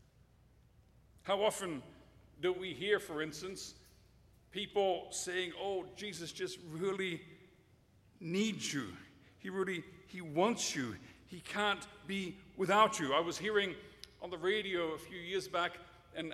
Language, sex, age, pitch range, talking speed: English, male, 50-69, 150-210 Hz, 130 wpm